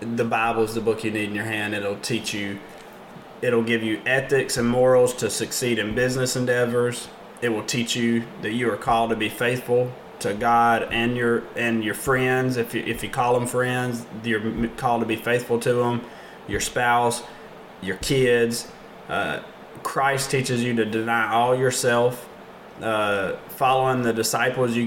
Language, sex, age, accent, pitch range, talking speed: English, male, 20-39, American, 115-130 Hz, 175 wpm